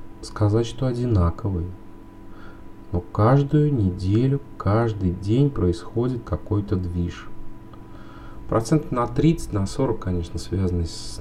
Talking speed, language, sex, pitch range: 100 wpm, English, male, 90-110 Hz